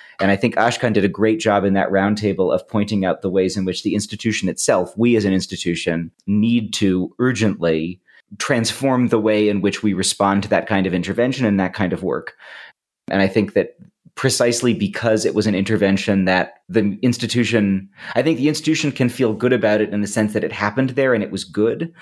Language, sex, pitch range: English, male, 95-120 Hz